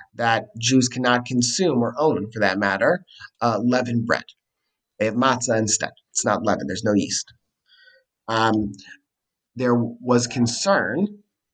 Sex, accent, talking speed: male, American, 135 wpm